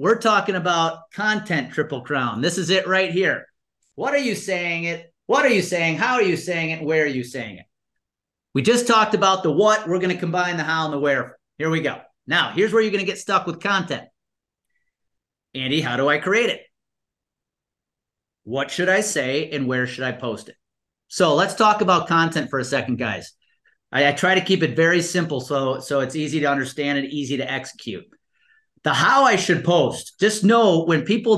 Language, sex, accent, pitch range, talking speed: English, male, American, 140-185 Hz, 205 wpm